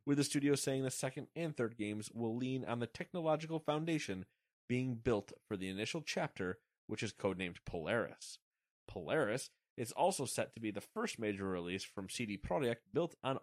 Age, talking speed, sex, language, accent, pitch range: 30-49, 180 wpm, male, English, American, 100-135 Hz